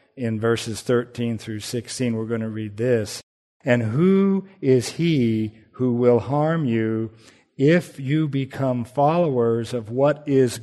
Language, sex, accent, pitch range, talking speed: English, male, American, 115-140 Hz, 140 wpm